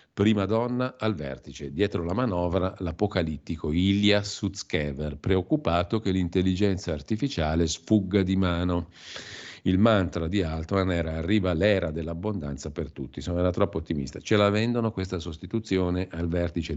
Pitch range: 80-95 Hz